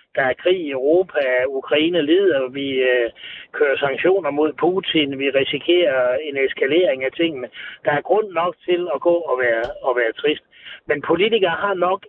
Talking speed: 175 wpm